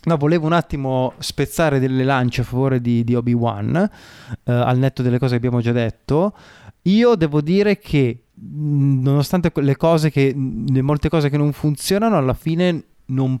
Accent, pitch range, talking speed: native, 125-150 Hz, 170 wpm